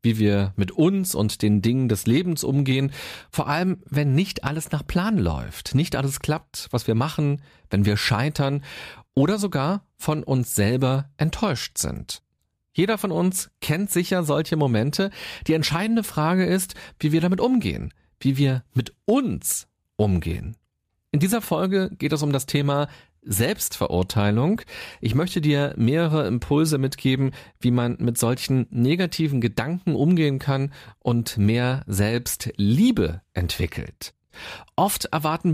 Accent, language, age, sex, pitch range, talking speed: German, German, 40-59, male, 120-165 Hz, 140 wpm